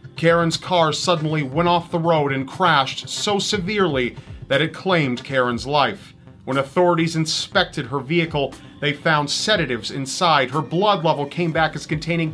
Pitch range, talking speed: 135-180 Hz, 155 wpm